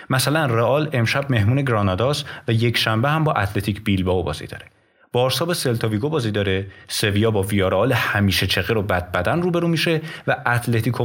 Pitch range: 95-130 Hz